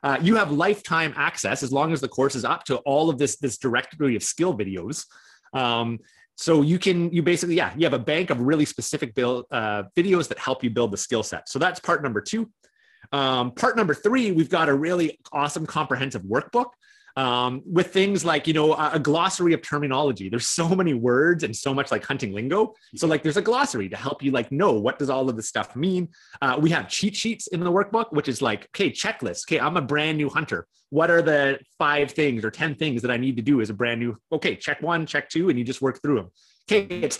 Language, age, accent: English, 30-49, American